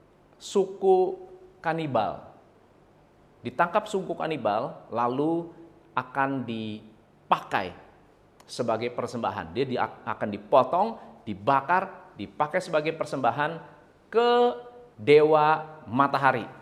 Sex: male